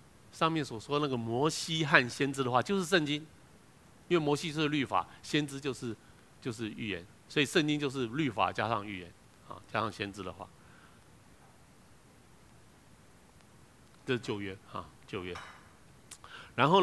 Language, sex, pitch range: Chinese, male, 105-150 Hz